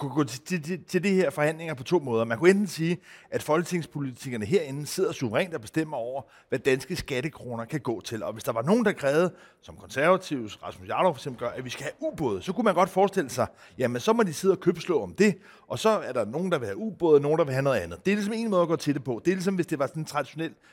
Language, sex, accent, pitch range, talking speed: Danish, male, native, 135-180 Hz, 275 wpm